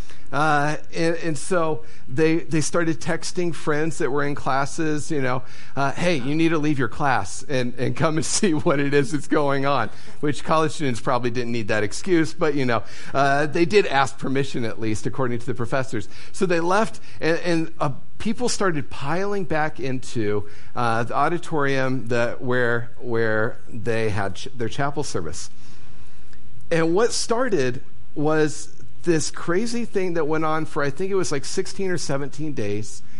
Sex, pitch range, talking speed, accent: male, 125-160 Hz, 180 wpm, American